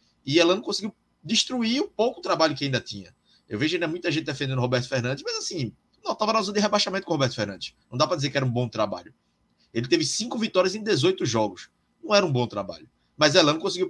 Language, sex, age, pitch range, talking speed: Portuguese, male, 20-39, 125-175 Hz, 235 wpm